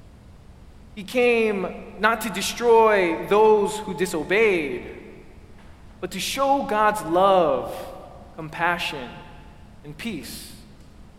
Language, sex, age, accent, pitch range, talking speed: English, male, 20-39, American, 155-210 Hz, 85 wpm